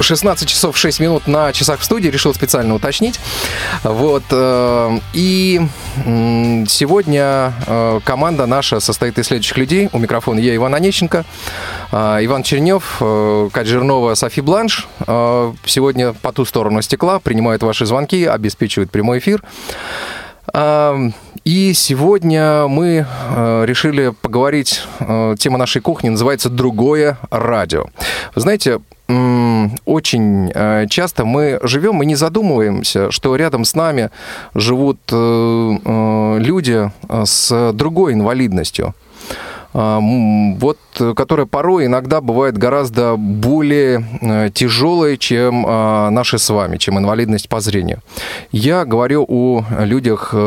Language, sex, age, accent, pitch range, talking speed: Russian, male, 30-49, native, 110-145 Hz, 110 wpm